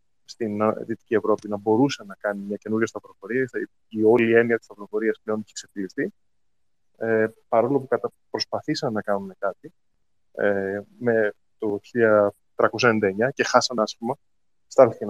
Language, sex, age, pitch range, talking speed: Greek, male, 20-39, 110-145 Hz, 155 wpm